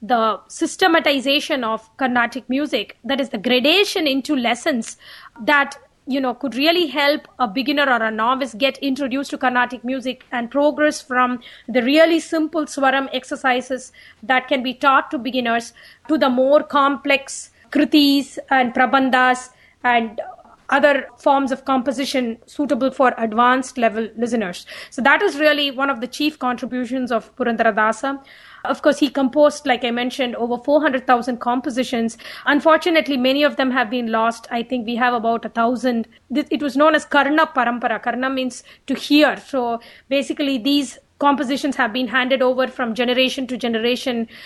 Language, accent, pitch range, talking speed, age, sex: English, Indian, 245-285 Hz, 155 wpm, 30-49, female